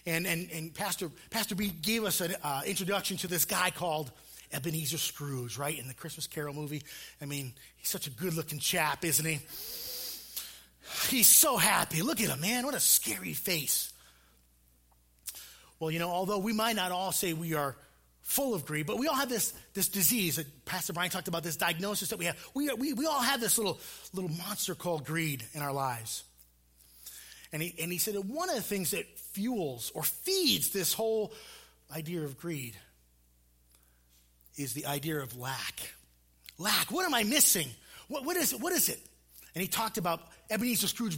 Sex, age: male, 30-49